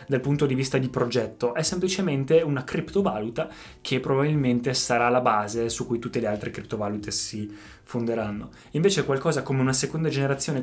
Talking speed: 165 wpm